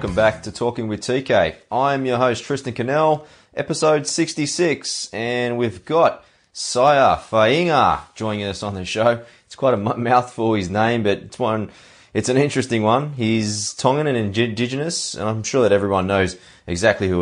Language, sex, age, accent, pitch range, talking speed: English, male, 20-39, Australian, 95-120 Hz, 170 wpm